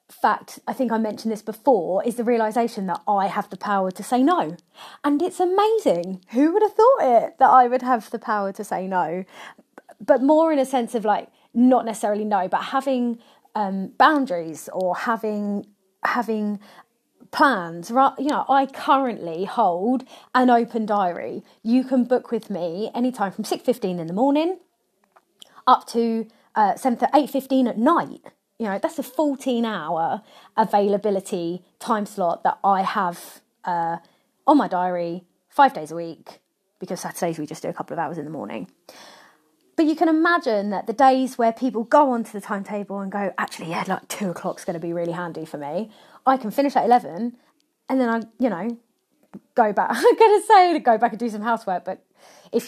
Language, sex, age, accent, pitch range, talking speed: English, female, 30-49, British, 195-260 Hz, 185 wpm